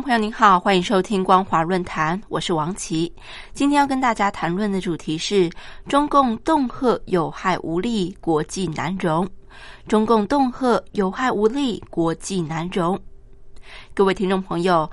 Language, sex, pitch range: Chinese, female, 175-235 Hz